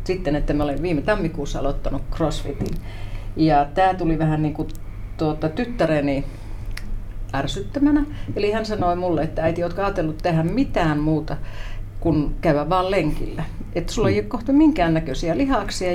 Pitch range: 135-180 Hz